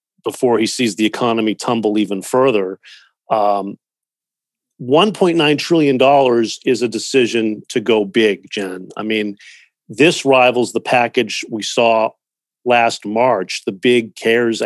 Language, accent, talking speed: English, American, 125 wpm